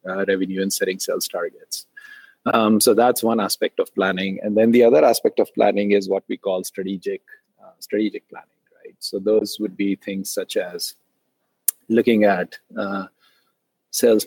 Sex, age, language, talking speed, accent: male, 30-49, English, 165 wpm, Indian